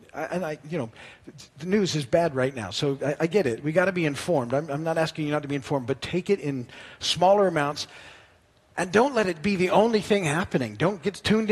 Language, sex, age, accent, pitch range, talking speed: English, male, 50-69, American, 130-170 Hz, 250 wpm